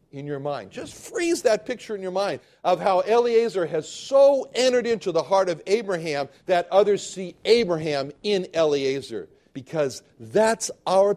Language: English